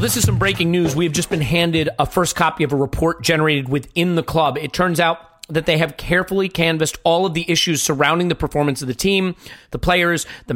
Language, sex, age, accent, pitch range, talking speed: English, male, 30-49, American, 160-205 Hz, 235 wpm